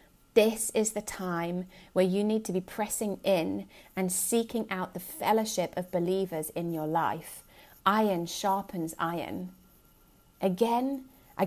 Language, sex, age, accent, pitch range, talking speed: English, female, 30-49, British, 180-220 Hz, 135 wpm